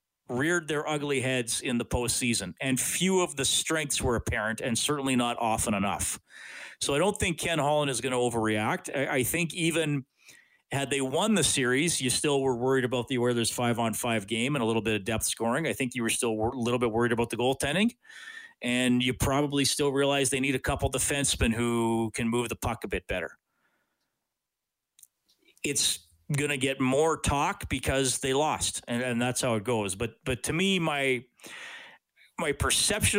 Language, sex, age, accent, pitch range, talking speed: English, male, 40-59, American, 120-145 Hz, 195 wpm